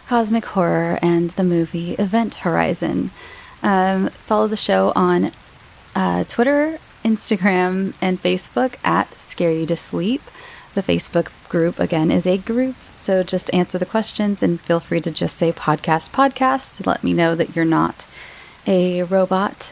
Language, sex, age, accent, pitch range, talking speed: English, female, 20-39, American, 175-230 Hz, 150 wpm